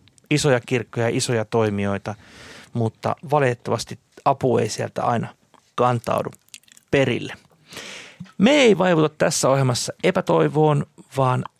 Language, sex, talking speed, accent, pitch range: Finnish, male, 100 wpm, native, 115-145 Hz